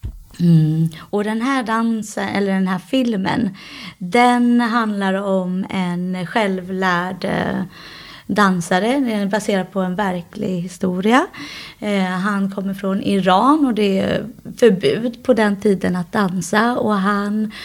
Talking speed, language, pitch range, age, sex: 120 wpm, Swedish, 185-220 Hz, 20-39, female